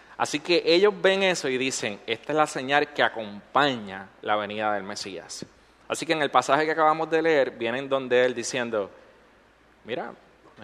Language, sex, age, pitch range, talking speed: Spanish, male, 30-49, 110-150 Hz, 180 wpm